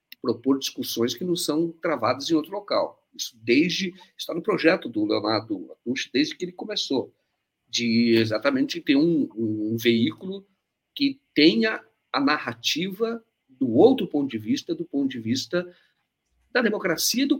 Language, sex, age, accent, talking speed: Portuguese, male, 50-69, Brazilian, 150 wpm